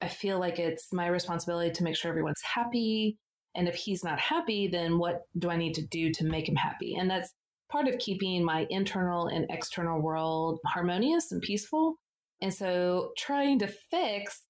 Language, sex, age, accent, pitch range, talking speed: English, female, 30-49, American, 165-200 Hz, 185 wpm